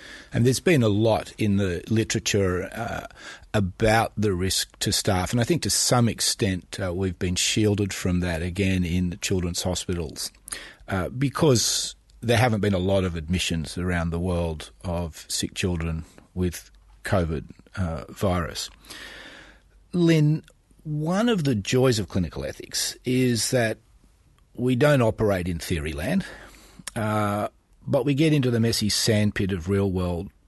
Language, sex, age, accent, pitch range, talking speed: English, male, 40-59, Australian, 90-125 Hz, 150 wpm